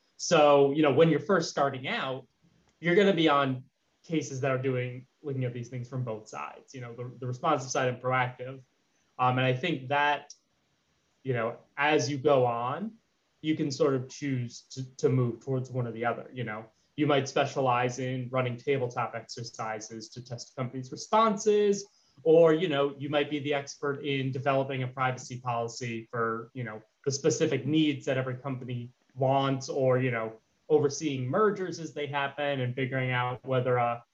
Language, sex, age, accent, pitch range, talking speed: English, male, 30-49, American, 125-150 Hz, 185 wpm